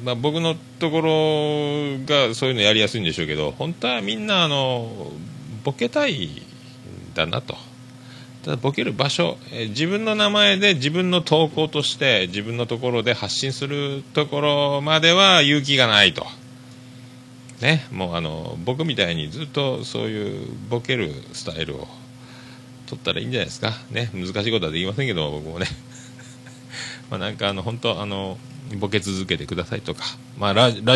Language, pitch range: Japanese, 115-135 Hz